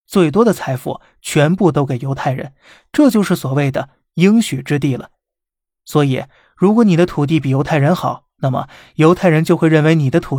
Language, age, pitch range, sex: Chinese, 20-39, 140-175 Hz, male